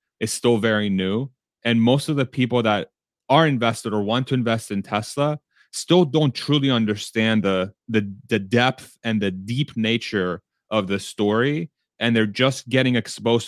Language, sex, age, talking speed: English, male, 30-49, 170 wpm